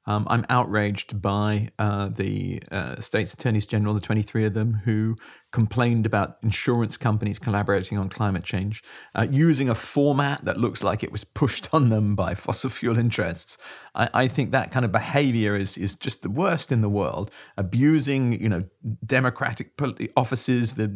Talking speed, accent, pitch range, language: 175 wpm, British, 110-130 Hz, English